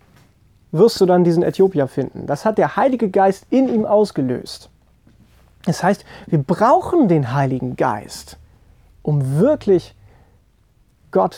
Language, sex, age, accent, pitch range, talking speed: German, male, 30-49, German, 155-215 Hz, 125 wpm